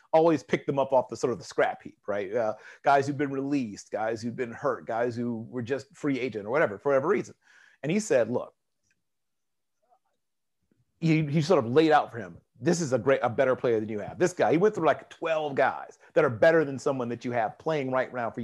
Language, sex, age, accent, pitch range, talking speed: English, male, 40-59, American, 120-160 Hz, 240 wpm